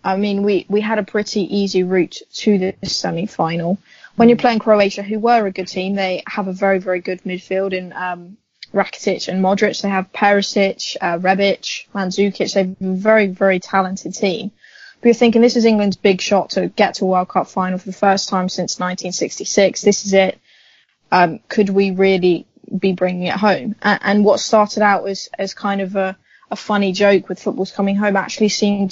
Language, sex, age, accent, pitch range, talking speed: English, female, 20-39, British, 185-210 Hz, 200 wpm